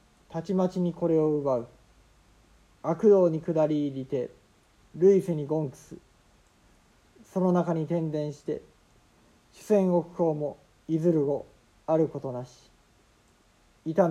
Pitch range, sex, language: 135-165 Hz, male, Japanese